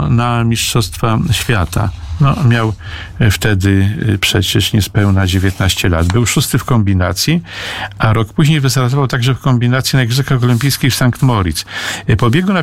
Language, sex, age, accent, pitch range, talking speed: Polish, male, 50-69, native, 105-135 Hz, 145 wpm